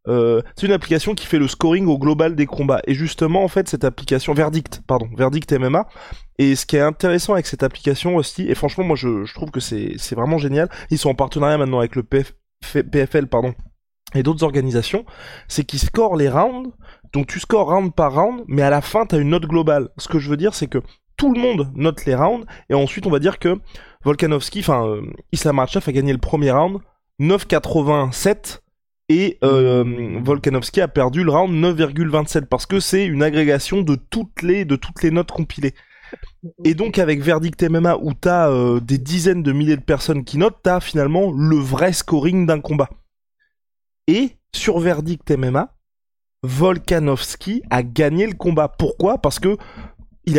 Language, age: French, 20-39